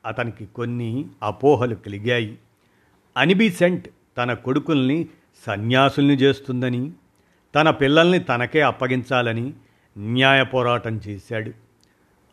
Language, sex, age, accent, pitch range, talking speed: Telugu, male, 50-69, native, 115-145 Hz, 80 wpm